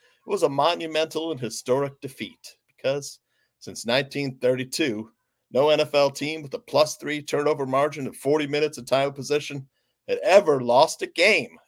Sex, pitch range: male, 140-225 Hz